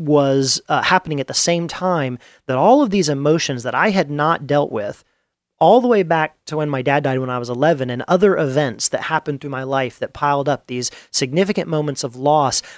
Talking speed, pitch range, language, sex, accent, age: 220 wpm, 130-160 Hz, English, male, American, 40-59